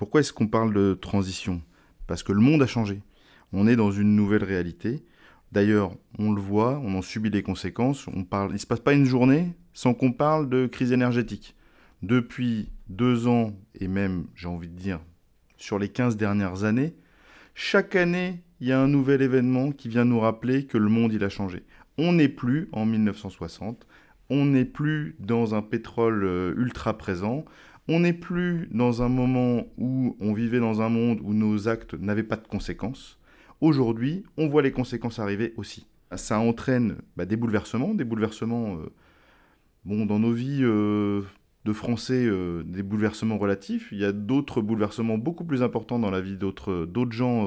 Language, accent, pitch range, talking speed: French, French, 100-125 Hz, 180 wpm